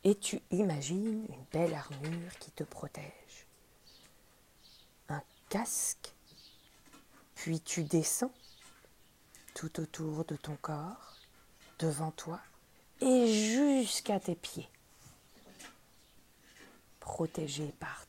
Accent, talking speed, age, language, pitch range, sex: French, 90 wpm, 40-59, French, 165-220 Hz, female